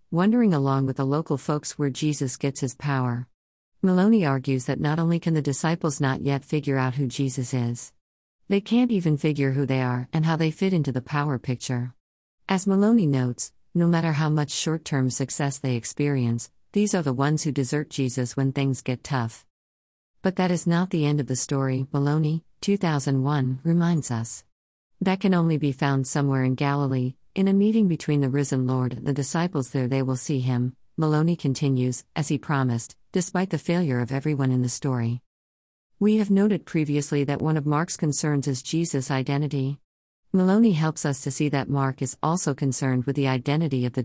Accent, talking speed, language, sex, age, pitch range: American, 190 wpm, English, female, 50-69, 130-160 Hz